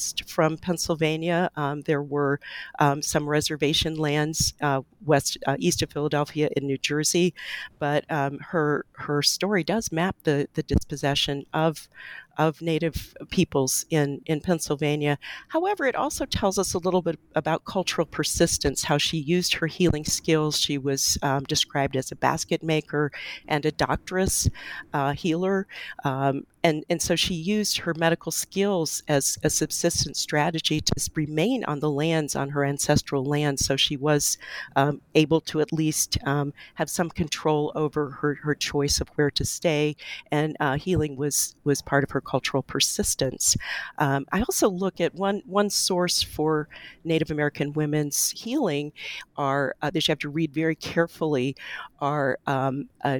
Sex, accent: female, American